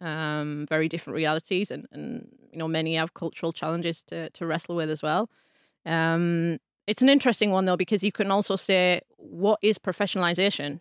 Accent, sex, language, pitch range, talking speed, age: British, female, English, 165-190 Hz, 180 wpm, 30-49